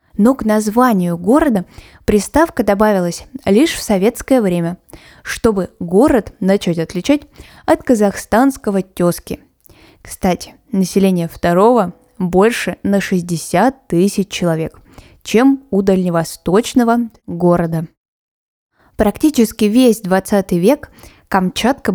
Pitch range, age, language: 180-230 Hz, 20-39, Russian